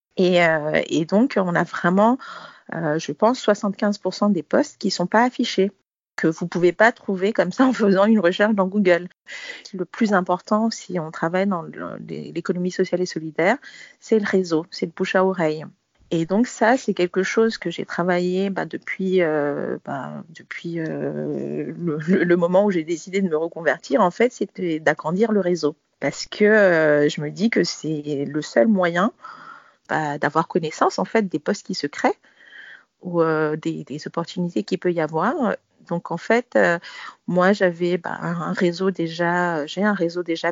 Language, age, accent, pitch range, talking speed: French, 40-59, French, 170-210 Hz, 190 wpm